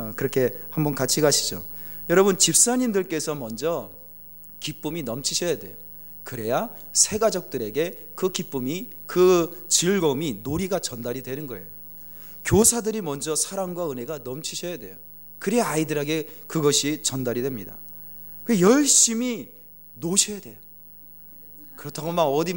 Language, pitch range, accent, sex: Korean, 130-210 Hz, native, male